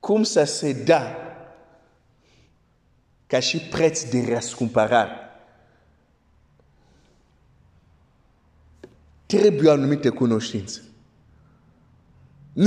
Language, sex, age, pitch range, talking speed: Romanian, male, 50-69, 135-180 Hz, 60 wpm